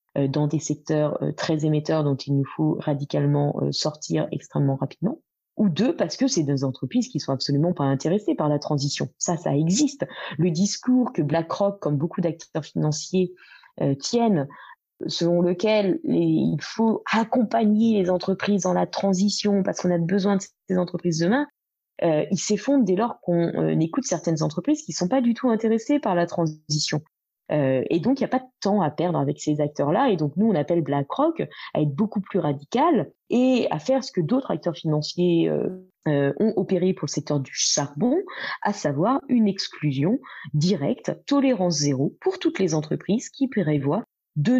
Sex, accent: female, French